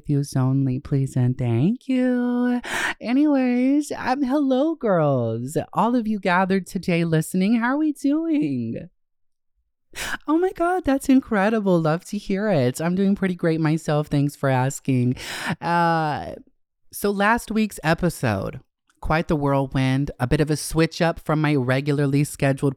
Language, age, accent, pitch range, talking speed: English, 30-49, American, 135-180 Hz, 145 wpm